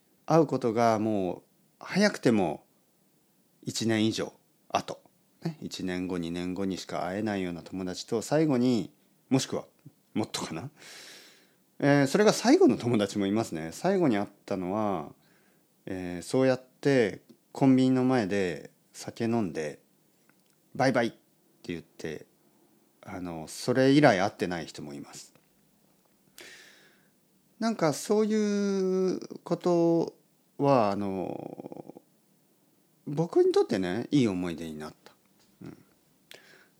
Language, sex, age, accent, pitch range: Japanese, male, 40-59, native, 95-160 Hz